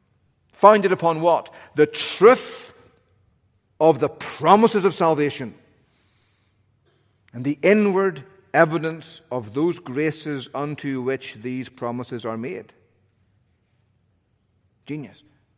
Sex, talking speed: male, 90 wpm